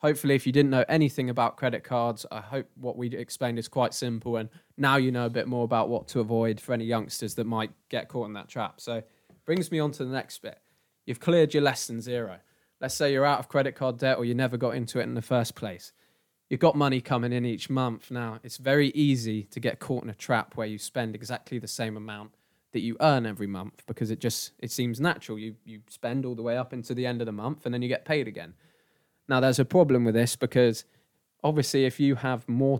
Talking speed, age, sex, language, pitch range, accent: 250 wpm, 20-39, male, English, 115-135 Hz, British